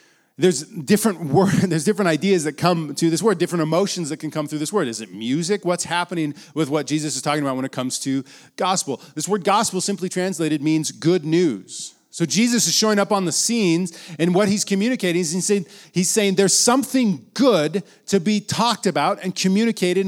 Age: 40-59